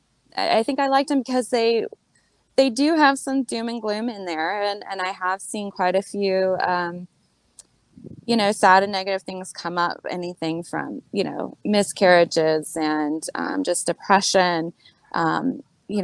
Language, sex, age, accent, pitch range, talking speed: English, female, 20-39, American, 175-230 Hz, 165 wpm